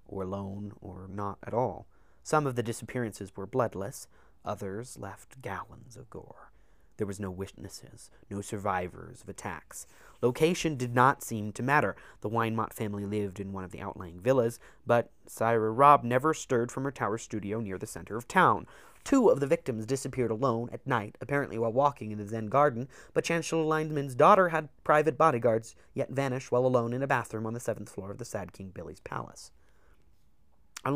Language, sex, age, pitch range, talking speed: English, male, 30-49, 100-130 Hz, 185 wpm